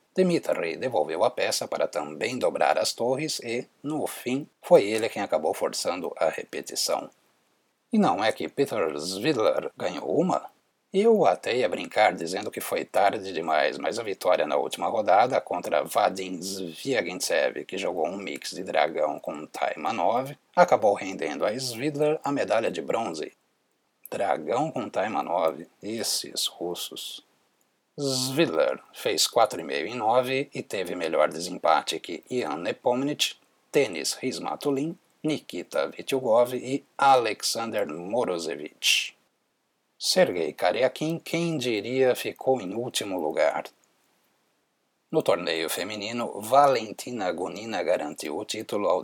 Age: 60-79